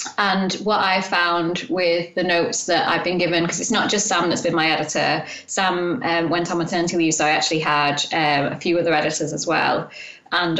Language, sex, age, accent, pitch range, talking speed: English, female, 20-39, British, 160-190 Hz, 215 wpm